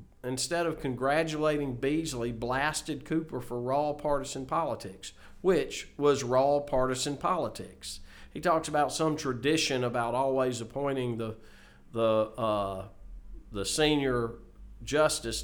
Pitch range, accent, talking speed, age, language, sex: 120-180 Hz, American, 115 wpm, 50-69, English, male